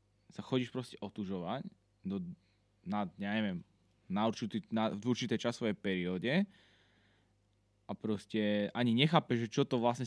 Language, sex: Slovak, male